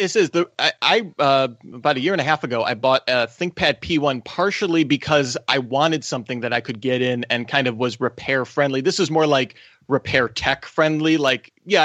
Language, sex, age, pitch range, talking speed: English, male, 30-49, 130-170 Hz, 220 wpm